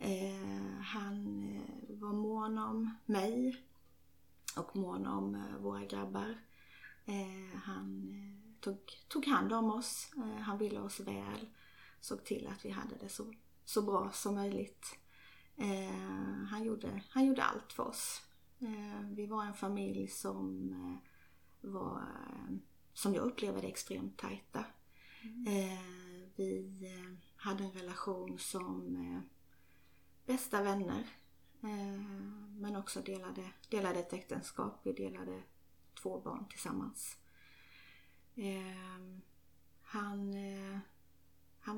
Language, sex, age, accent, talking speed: Swedish, female, 30-49, native, 120 wpm